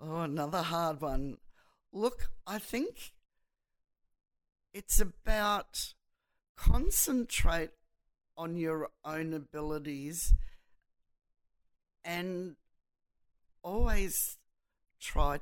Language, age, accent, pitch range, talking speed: English, 50-69, Australian, 140-170 Hz, 65 wpm